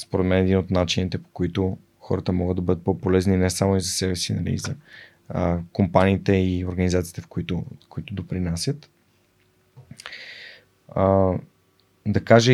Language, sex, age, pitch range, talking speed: Bulgarian, male, 20-39, 95-105 Hz, 160 wpm